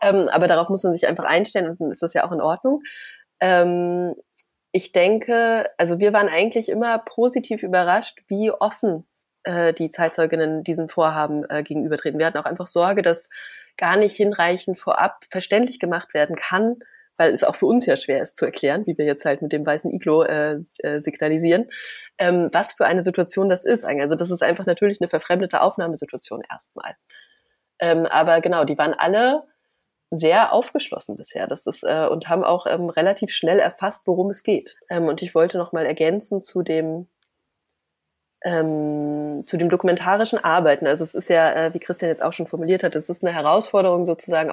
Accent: German